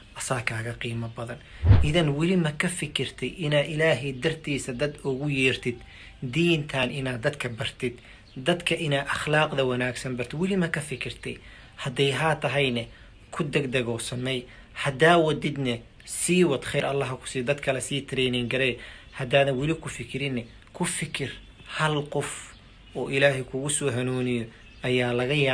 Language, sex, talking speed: Arabic, male, 125 wpm